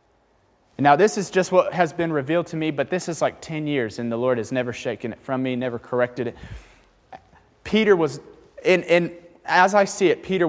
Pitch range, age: 130-175 Hz, 30-49